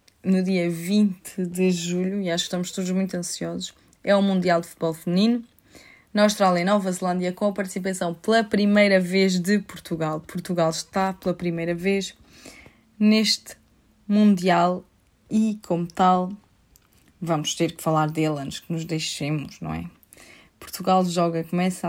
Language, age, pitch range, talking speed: Portuguese, 20-39, 170-200 Hz, 150 wpm